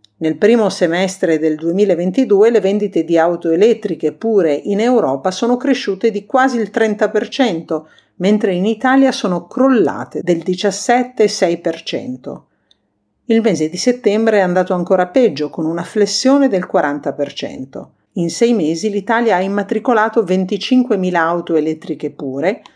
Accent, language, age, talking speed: native, Italian, 50-69, 130 wpm